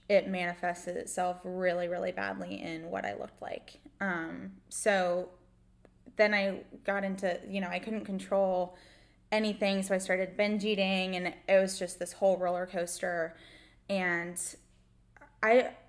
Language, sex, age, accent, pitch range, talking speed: English, female, 10-29, American, 180-205 Hz, 145 wpm